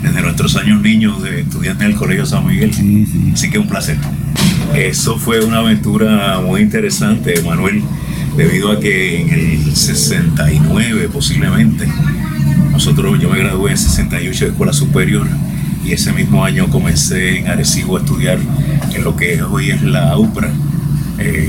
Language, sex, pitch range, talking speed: Spanish, male, 105-160 Hz, 150 wpm